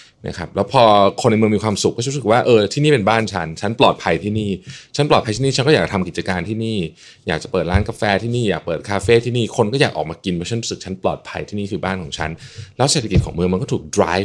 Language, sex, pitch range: Thai, male, 95-120 Hz